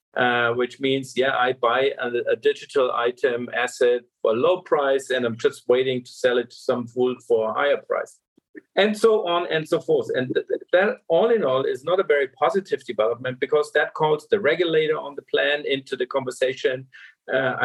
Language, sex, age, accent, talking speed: English, male, 50-69, German, 205 wpm